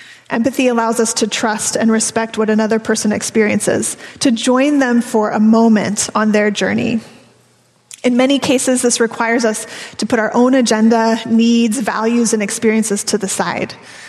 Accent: American